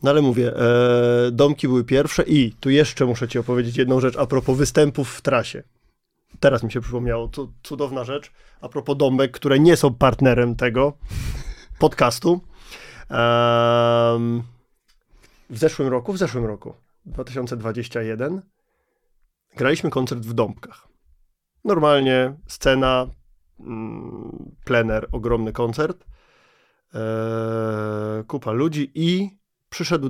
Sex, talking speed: male, 110 wpm